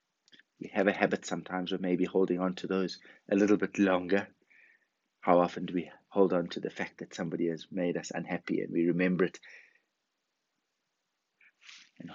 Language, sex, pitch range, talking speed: English, male, 90-105 Hz, 175 wpm